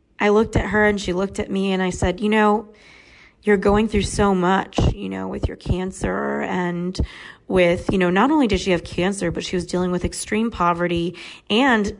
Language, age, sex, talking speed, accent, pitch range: English, 30-49, female, 210 wpm, American, 175-210 Hz